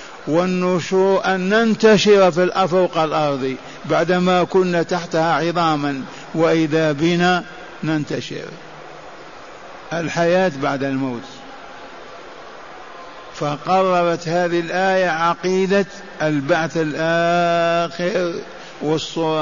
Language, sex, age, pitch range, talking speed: Arabic, male, 50-69, 165-190 Hz, 70 wpm